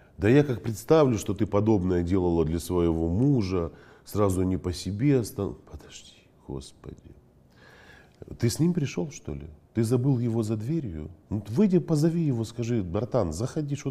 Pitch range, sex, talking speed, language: 85-120 Hz, male, 155 wpm, Russian